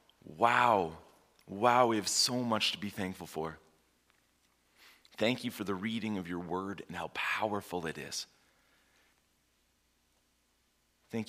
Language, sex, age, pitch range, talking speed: English, male, 30-49, 70-95 Hz, 130 wpm